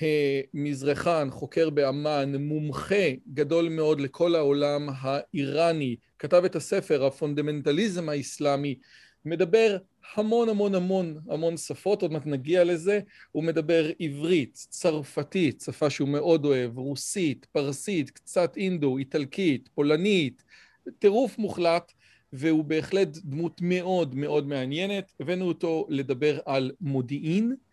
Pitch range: 145-180 Hz